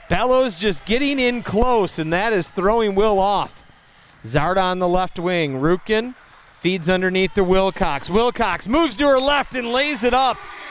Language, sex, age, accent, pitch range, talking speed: English, male, 40-59, American, 190-225 Hz, 170 wpm